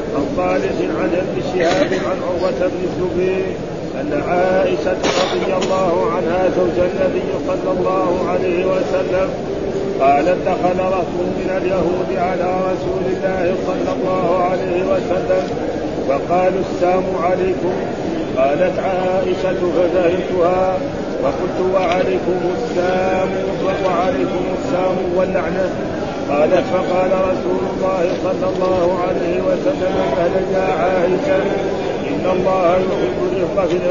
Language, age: Arabic, 40-59